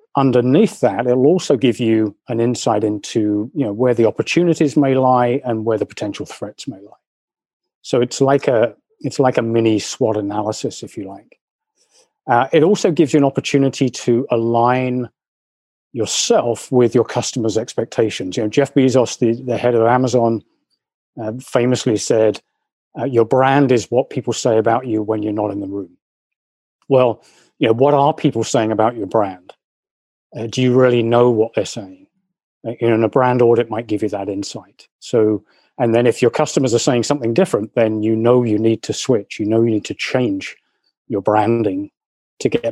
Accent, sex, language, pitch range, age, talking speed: British, male, English, 110-130 Hz, 40-59, 190 wpm